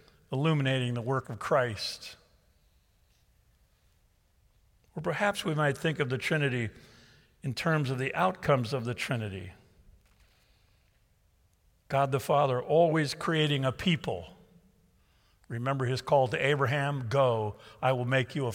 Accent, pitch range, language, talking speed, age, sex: American, 110-140 Hz, English, 125 wpm, 50-69, male